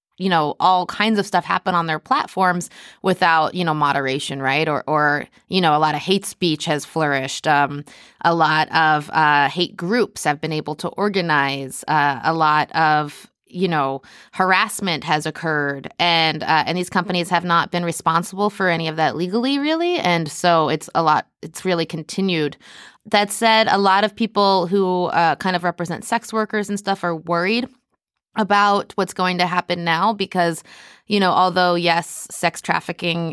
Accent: American